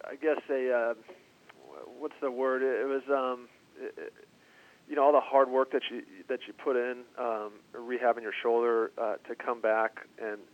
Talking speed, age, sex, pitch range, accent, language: 190 wpm, 40-59, male, 110-125 Hz, American, English